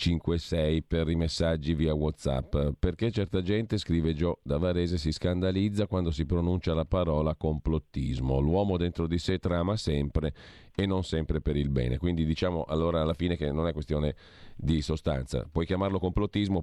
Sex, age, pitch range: male, 40-59, 80-95 Hz